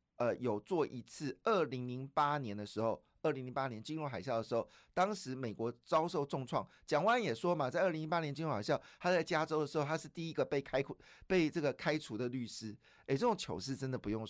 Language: Chinese